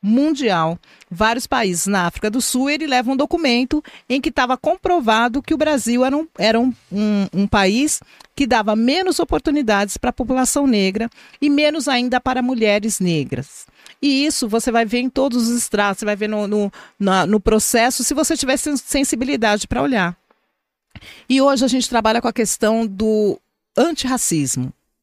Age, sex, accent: 40-59, female, Brazilian